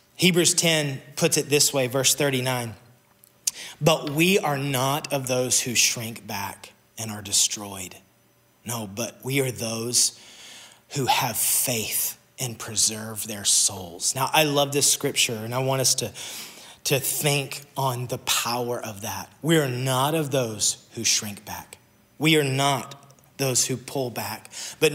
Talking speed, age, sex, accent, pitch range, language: 155 wpm, 30-49, male, American, 125-150 Hz, English